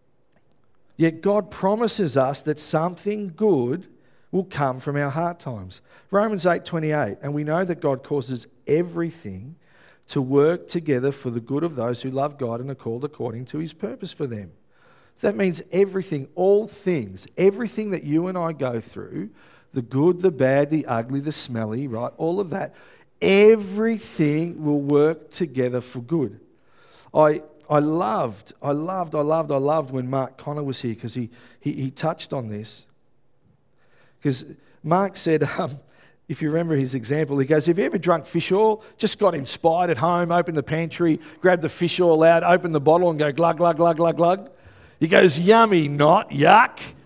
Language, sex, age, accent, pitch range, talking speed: English, male, 50-69, Australian, 140-185 Hz, 175 wpm